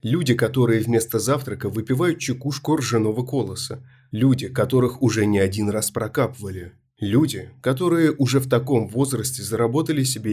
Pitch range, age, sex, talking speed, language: 110-130 Hz, 20-39, male, 135 wpm, Russian